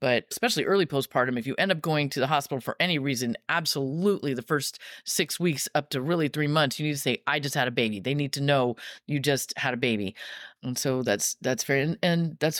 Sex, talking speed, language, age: female, 245 wpm, English, 30-49